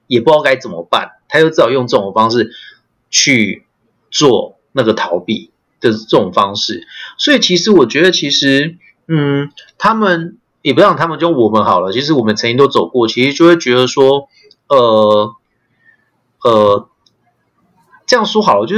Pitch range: 130-200 Hz